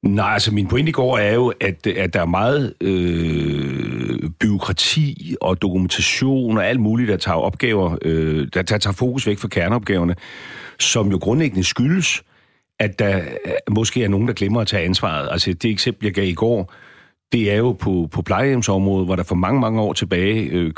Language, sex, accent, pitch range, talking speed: Danish, male, native, 90-115 Hz, 190 wpm